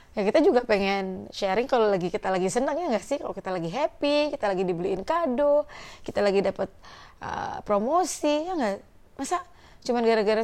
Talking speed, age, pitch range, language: 180 wpm, 20-39, 180-225 Hz, Indonesian